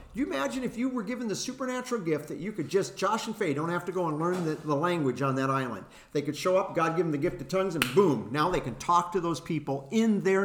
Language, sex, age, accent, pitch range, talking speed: English, male, 50-69, American, 130-190 Hz, 295 wpm